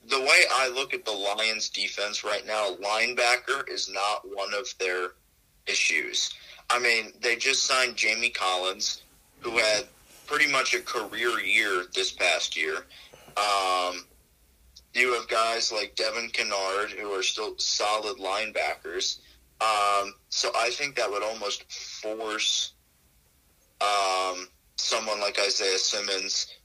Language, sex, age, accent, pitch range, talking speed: English, male, 30-49, American, 90-120 Hz, 135 wpm